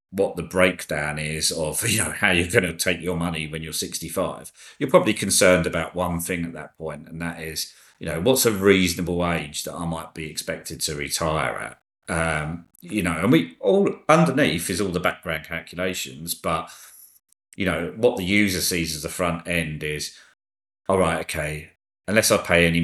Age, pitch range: 40-59, 80-90 Hz